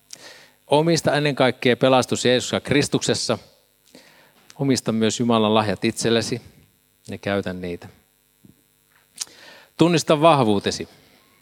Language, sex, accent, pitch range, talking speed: Finnish, male, native, 105-135 Hz, 90 wpm